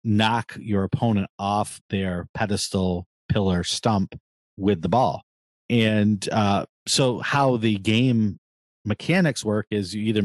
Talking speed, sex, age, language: 130 wpm, male, 40-59, English